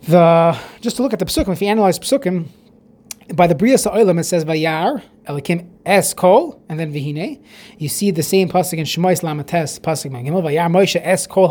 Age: 20-39